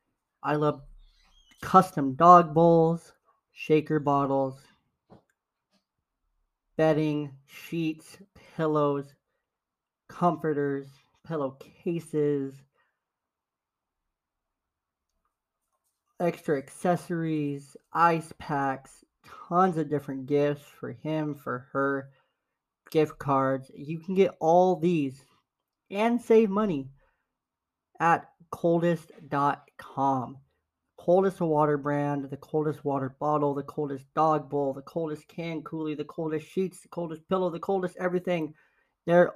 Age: 30-49